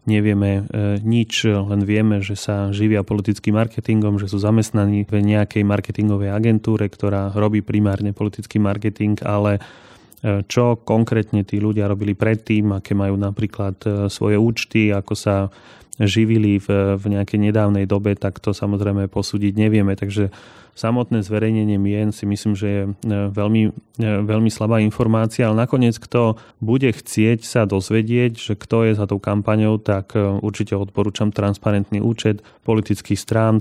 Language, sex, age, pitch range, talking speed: Slovak, male, 30-49, 100-110 Hz, 145 wpm